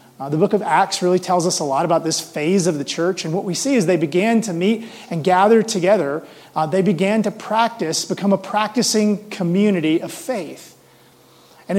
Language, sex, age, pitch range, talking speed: English, male, 30-49, 170-210 Hz, 205 wpm